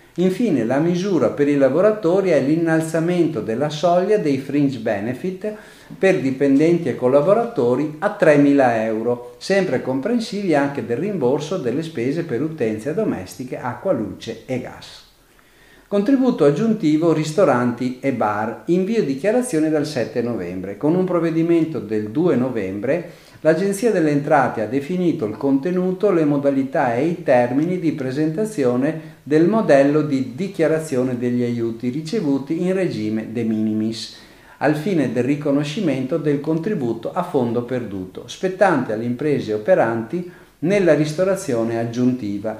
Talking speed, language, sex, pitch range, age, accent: 130 wpm, Italian, male, 120-175 Hz, 50-69, native